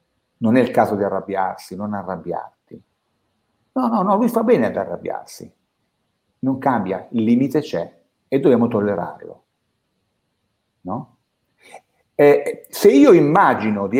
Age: 50-69